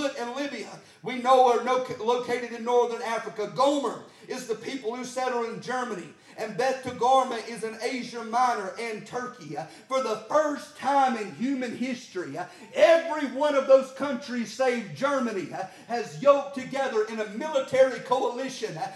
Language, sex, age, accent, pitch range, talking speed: English, male, 40-59, American, 230-270 Hz, 150 wpm